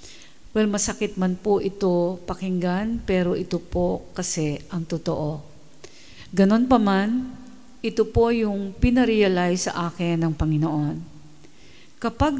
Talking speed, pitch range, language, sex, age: 115 wpm, 160-210 Hz, English, female, 50-69